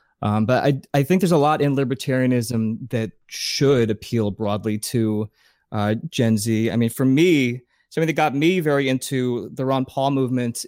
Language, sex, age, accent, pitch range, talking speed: English, male, 20-39, American, 110-135 Hz, 180 wpm